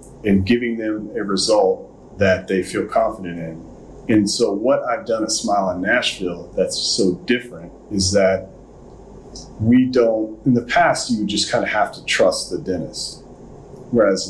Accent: American